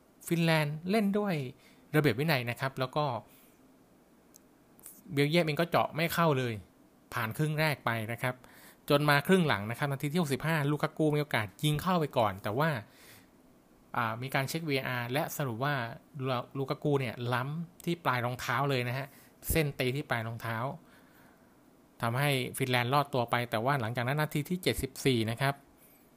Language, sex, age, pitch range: Thai, male, 20-39, 120-150 Hz